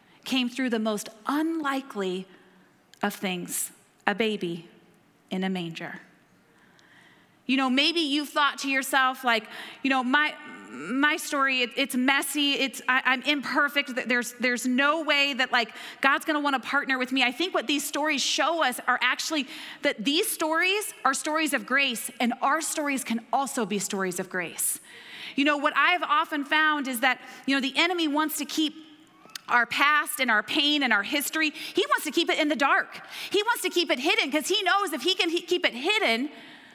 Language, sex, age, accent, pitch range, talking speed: English, female, 30-49, American, 255-320 Hz, 190 wpm